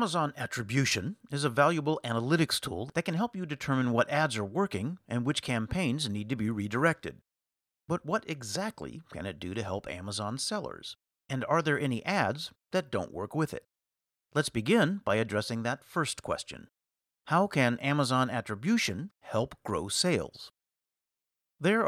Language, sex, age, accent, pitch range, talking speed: English, male, 50-69, American, 105-150 Hz, 160 wpm